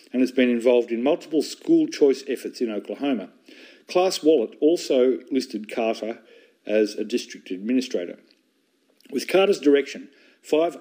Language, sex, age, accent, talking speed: English, male, 50-69, Australian, 135 wpm